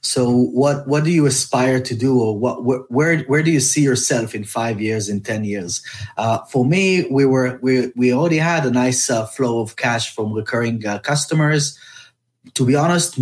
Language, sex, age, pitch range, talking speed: English, male, 30-49, 115-145 Hz, 205 wpm